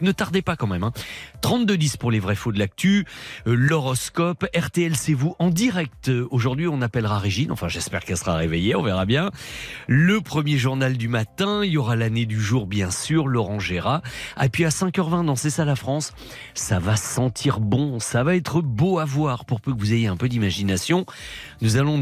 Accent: French